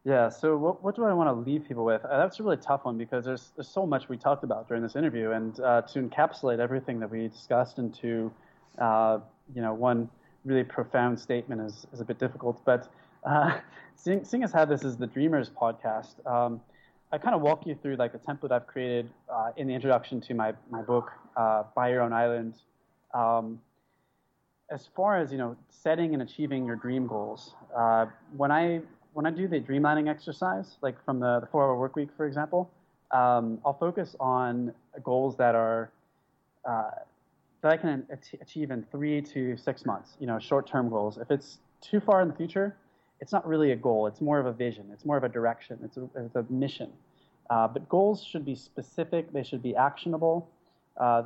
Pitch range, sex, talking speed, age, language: 120-150 Hz, male, 205 wpm, 20-39, English